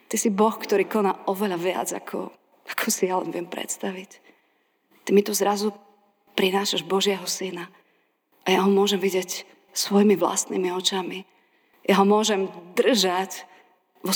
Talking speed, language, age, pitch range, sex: 145 wpm, Slovak, 30-49, 185-205 Hz, female